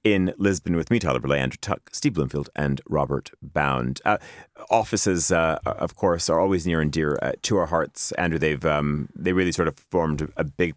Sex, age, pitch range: male, 30-49, 75-95 Hz